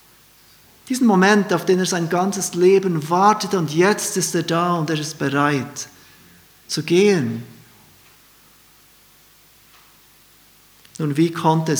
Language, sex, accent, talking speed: German, male, German, 115 wpm